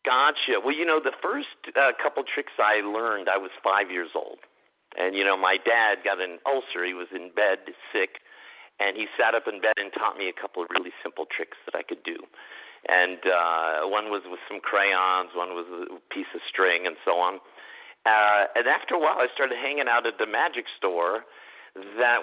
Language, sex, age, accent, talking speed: English, male, 50-69, American, 210 wpm